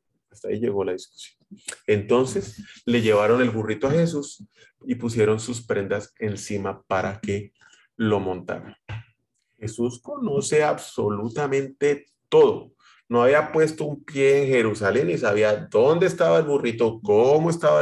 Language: Spanish